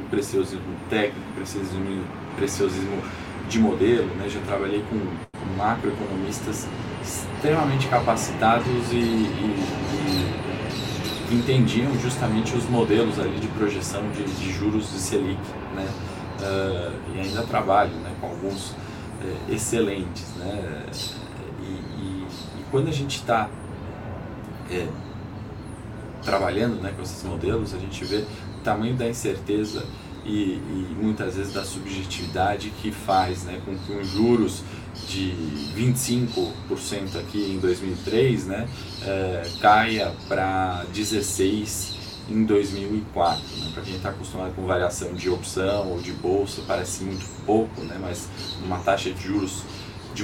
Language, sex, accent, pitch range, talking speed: Portuguese, male, Brazilian, 95-110 Hz, 120 wpm